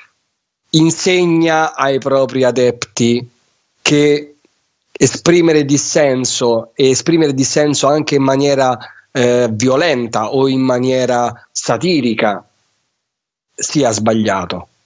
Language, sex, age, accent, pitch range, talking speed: Italian, male, 30-49, native, 120-155 Hz, 85 wpm